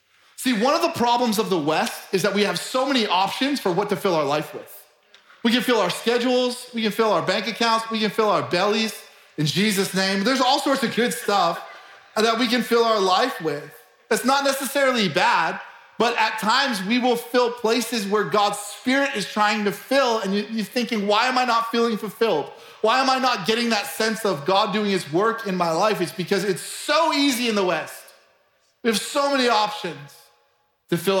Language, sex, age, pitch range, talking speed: English, male, 30-49, 135-225 Hz, 215 wpm